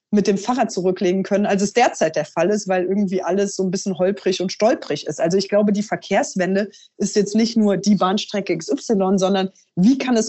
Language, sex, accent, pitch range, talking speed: German, female, German, 185-225 Hz, 215 wpm